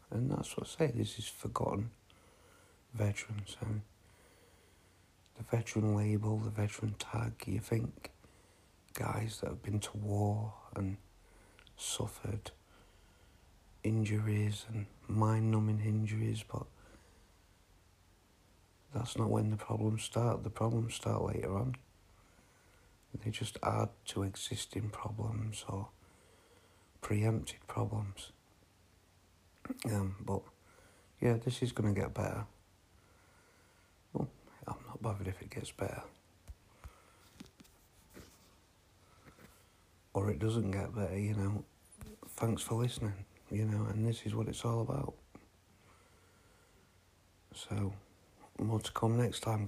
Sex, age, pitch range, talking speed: male, 60-79, 95-110 Hz, 110 wpm